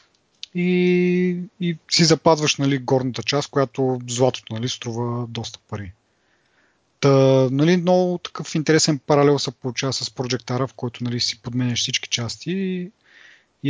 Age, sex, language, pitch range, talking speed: 30-49, male, Bulgarian, 125-145 Hz, 135 wpm